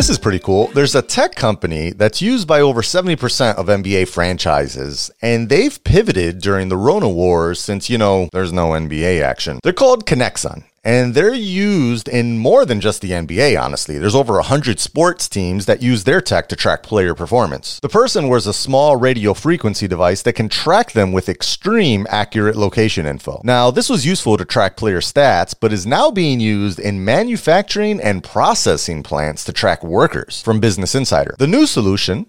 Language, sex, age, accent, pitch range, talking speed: English, male, 30-49, American, 100-145 Hz, 185 wpm